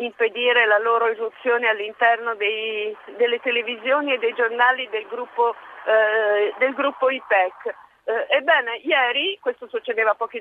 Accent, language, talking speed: native, Italian, 135 wpm